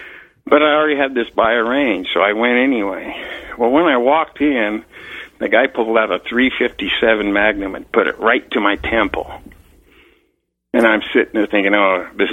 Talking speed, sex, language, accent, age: 185 wpm, male, English, American, 60-79